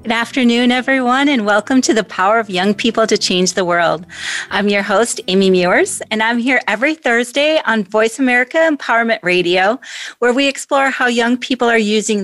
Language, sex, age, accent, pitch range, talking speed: English, female, 30-49, American, 195-245 Hz, 185 wpm